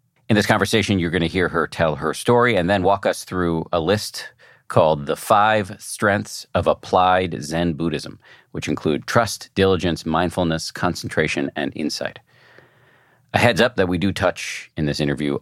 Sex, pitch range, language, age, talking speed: male, 80-100 Hz, English, 40-59, 170 wpm